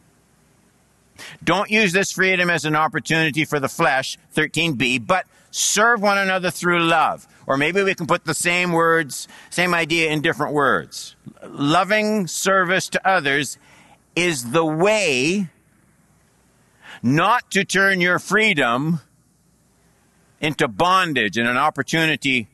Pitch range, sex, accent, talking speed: 120-175 Hz, male, American, 125 wpm